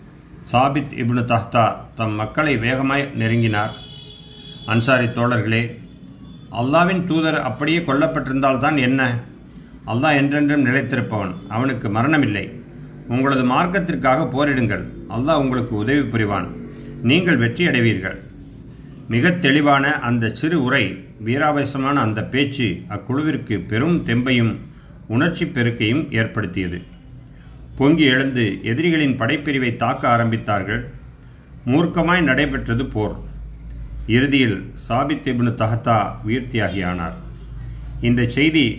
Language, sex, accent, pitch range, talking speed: Tamil, male, native, 110-140 Hz, 90 wpm